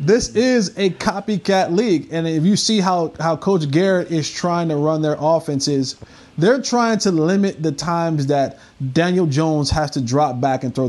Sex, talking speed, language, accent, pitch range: male, 185 wpm, English, American, 140-170 Hz